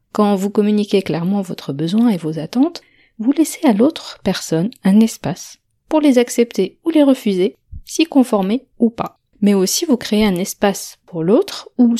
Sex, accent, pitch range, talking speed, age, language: female, French, 180-240 Hz, 175 wpm, 40-59, French